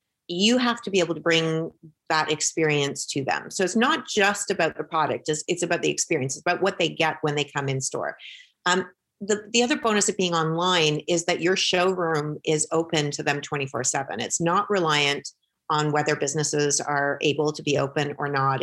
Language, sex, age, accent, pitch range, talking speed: English, female, 30-49, American, 150-185 Hz, 205 wpm